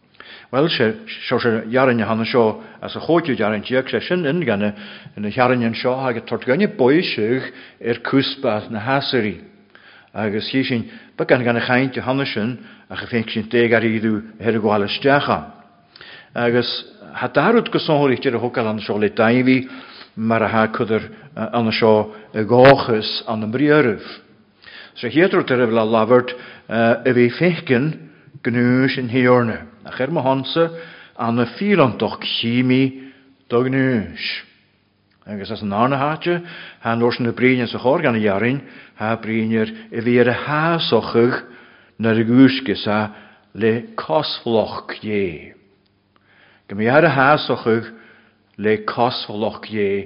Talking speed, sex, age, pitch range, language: 95 wpm, male, 50-69, 110-130 Hz, English